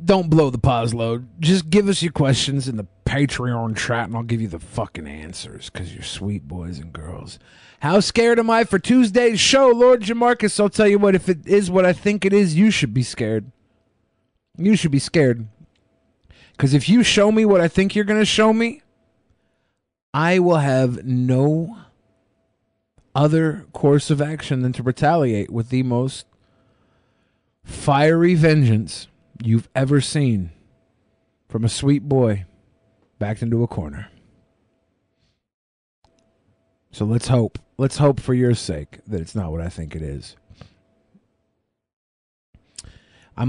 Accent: American